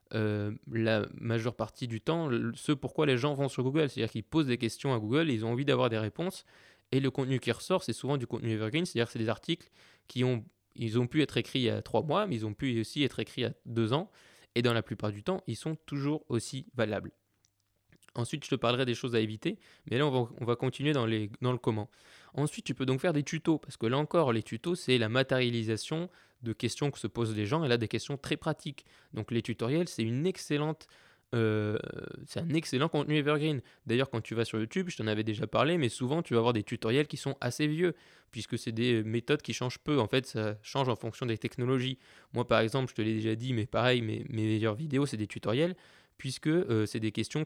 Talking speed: 245 wpm